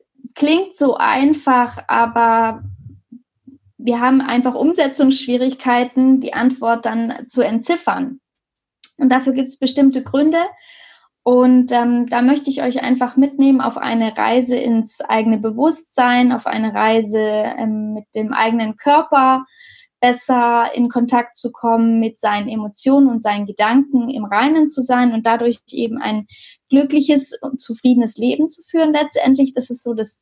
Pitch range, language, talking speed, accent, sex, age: 235-275 Hz, German, 140 wpm, German, female, 10-29